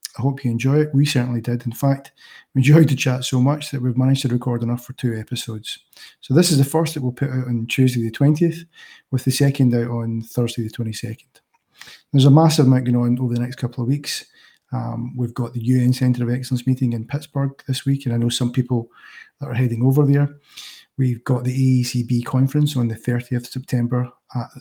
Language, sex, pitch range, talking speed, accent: English, male, 120-135 Hz, 225 wpm, British